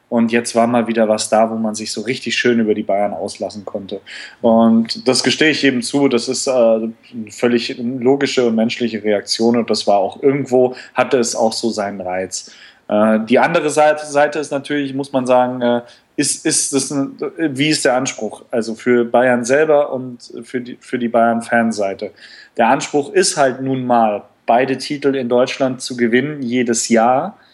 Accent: German